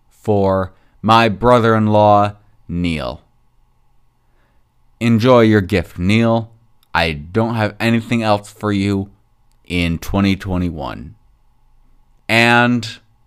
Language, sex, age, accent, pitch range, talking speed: English, male, 30-49, American, 95-120 Hz, 80 wpm